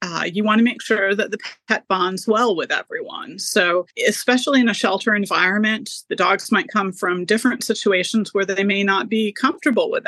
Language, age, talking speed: English, 30-49, 195 wpm